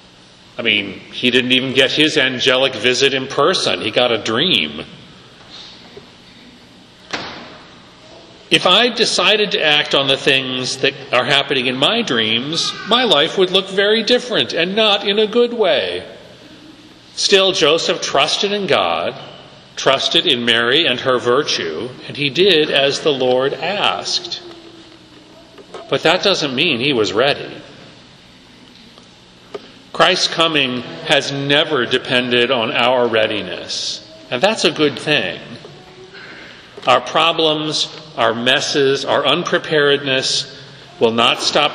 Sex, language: male, English